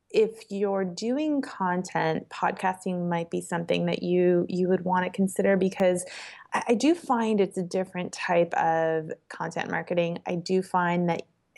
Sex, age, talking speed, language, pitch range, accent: female, 20-39, 160 wpm, English, 170-215 Hz, American